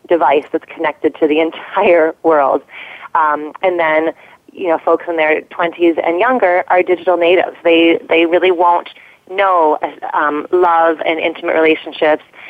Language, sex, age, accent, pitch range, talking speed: English, female, 30-49, American, 155-190 Hz, 150 wpm